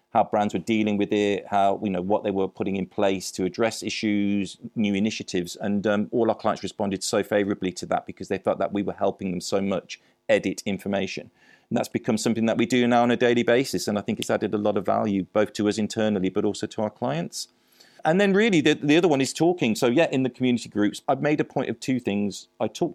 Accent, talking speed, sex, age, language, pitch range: British, 250 wpm, male, 40-59, English, 100-135 Hz